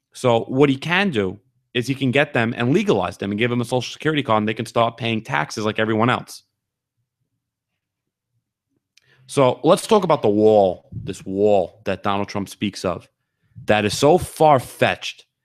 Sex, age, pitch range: male, 30-49, 105-135 Hz